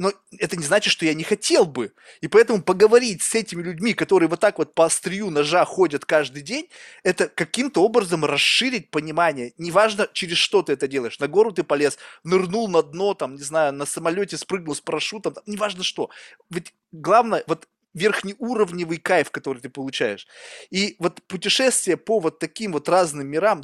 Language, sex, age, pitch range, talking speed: Russian, male, 20-39, 160-225 Hz, 180 wpm